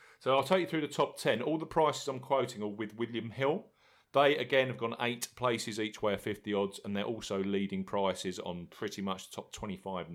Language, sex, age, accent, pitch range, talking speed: English, male, 40-59, British, 105-135 Hz, 235 wpm